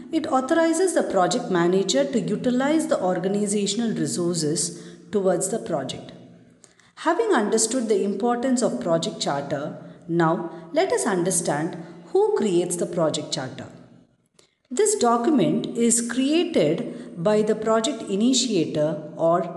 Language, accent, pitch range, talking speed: English, Indian, 170-260 Hz, 115 wpm